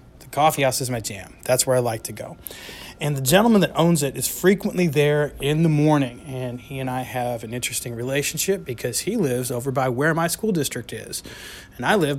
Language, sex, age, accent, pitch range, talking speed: English, male, 30-49, American, 125-165 Hz, 215 wpm